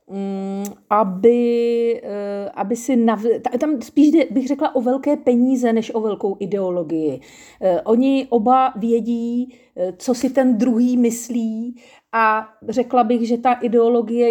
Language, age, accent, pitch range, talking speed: Czech, 40-59, native, 205-255 Hz, 120 wpm